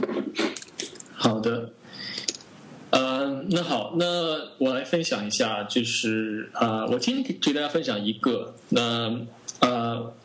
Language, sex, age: Chinese, male, 20-39